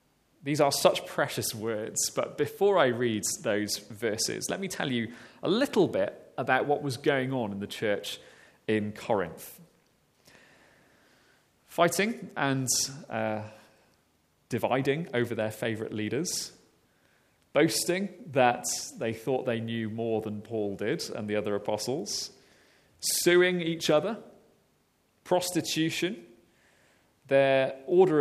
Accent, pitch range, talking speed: British, 110-145 Hz, 120 wpm